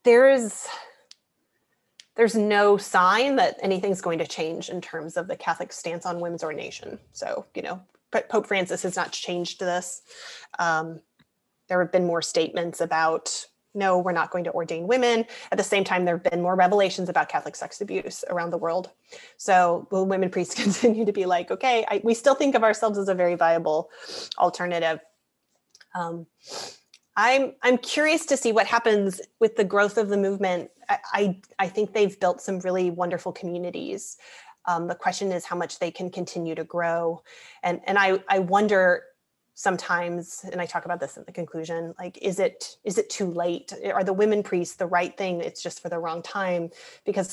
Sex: female